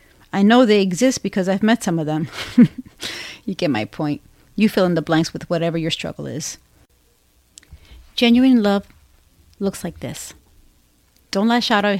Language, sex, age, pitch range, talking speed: English, female, 30-49, 170-205 Hz, 165 wpm